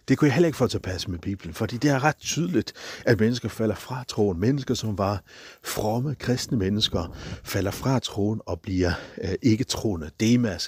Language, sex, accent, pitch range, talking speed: Danish, male, native, 95-120 Hz, 200 wpm